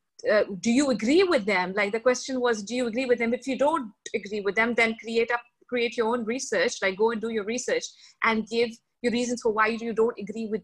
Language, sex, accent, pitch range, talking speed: English, female, Indian, 225-280 Hz, 250 wpm